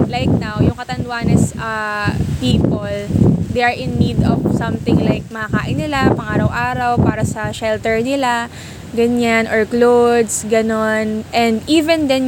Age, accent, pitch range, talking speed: 20-39, native, 210-240 Hz, 135 wpm